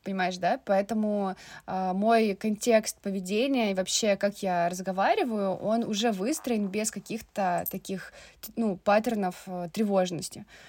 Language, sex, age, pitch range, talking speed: Russian, female, 20-39, 185-225 Hz, 125 wpm